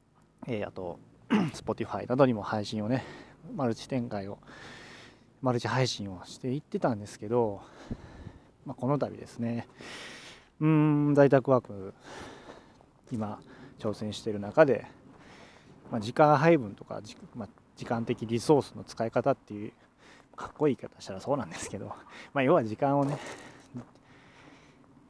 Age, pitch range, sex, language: 20-39, 105-135 Hz, male, Japanese